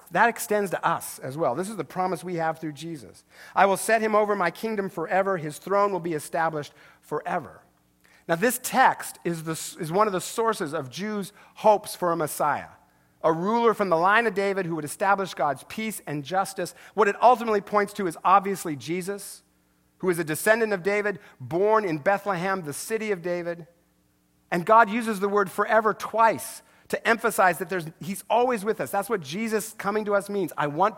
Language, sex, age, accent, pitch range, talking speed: English, male, 50-69, American, 165-215 Hz, 200 wpm